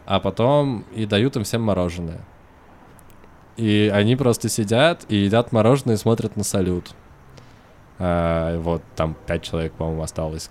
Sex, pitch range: male, 95-110 Hz